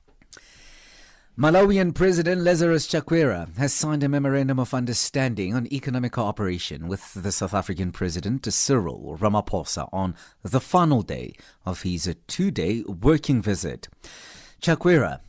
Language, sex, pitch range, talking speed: English, male, 95-140 Hz, 120 wpm